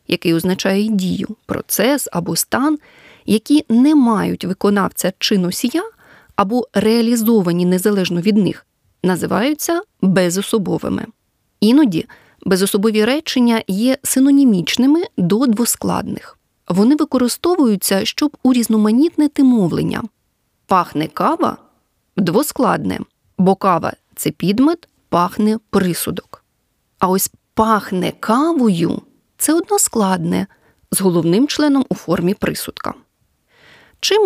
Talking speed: 100 wpm